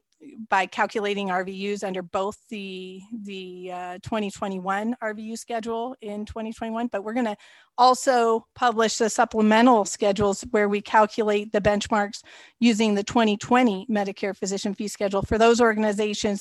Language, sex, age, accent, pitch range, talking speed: English, female, 40-59, American, 195-225 Hz, 135 wpm